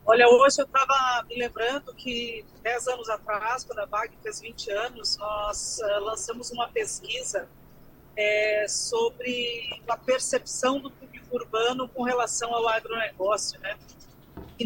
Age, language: 40-59, Portuguese